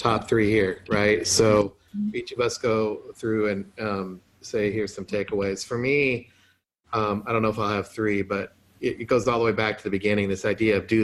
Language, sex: English, male